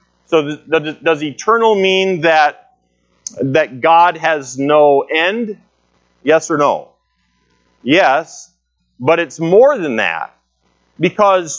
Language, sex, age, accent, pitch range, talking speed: English, male, 40-59, American, 125-190 Hz, 115 wpm